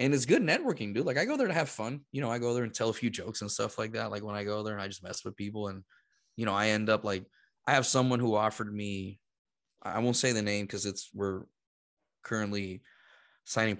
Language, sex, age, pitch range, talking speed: English, male, 20-39, 100-115 Hz, 260 wpm